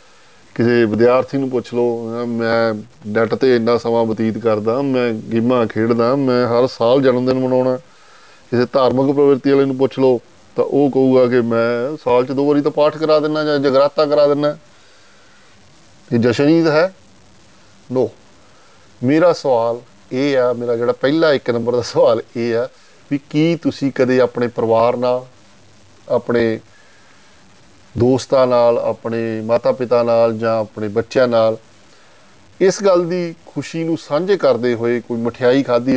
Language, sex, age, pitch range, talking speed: Punjabi, male, 20-39, 115-140 Hz, 155 wpm